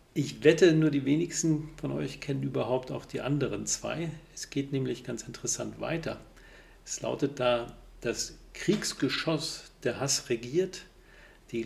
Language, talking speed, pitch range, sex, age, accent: German, 145 wpm, 115-160 Hz, male, 50-69, German